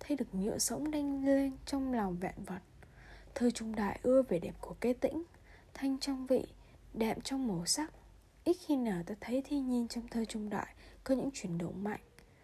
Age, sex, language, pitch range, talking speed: 20-39, female, Vietnamese, 200-275 Hz, 200 wpm